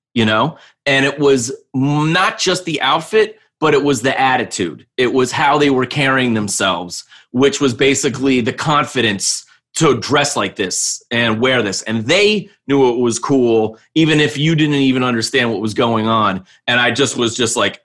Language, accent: English, American